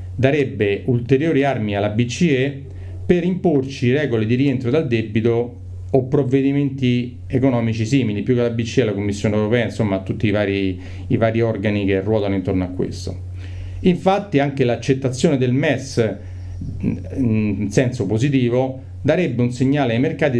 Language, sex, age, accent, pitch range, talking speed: Italian, male, 40-59, native, 95-135 Hz, 145 wpm